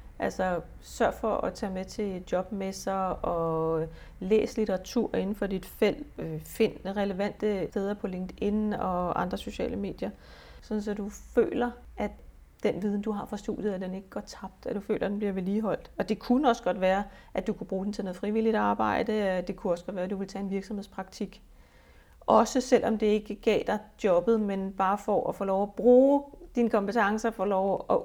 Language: Danish